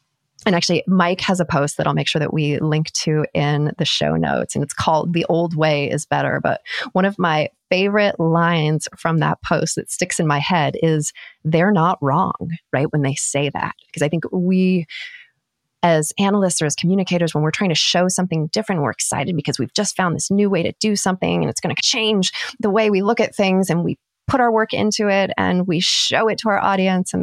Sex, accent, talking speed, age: female, American, 225 wpm, 30-49